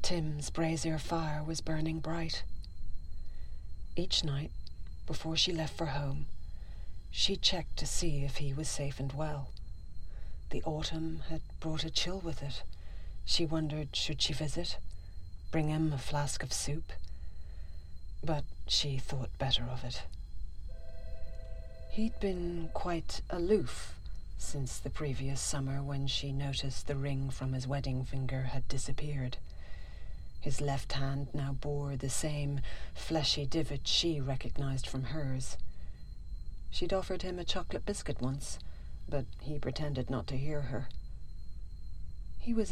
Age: 40-59